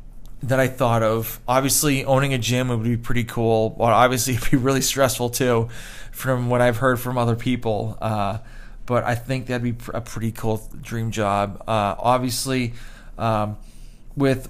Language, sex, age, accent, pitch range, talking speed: English, male, 20-39, American, 115-130 Hz, 170 wpm